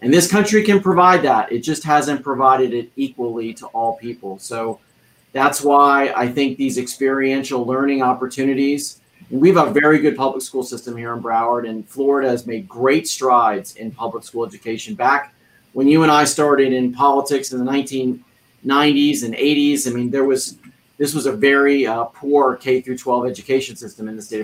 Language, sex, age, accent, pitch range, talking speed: English, male, 40-59, American, 125-150 Hz, 185 wpm